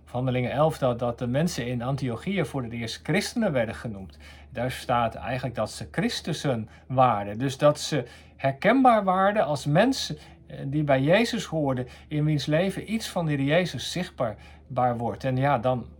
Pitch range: 120-155 Hz